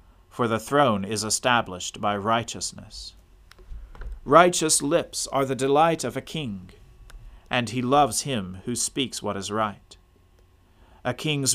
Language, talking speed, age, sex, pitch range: English, 135 wpm, 40-59, male, 95-130 Hz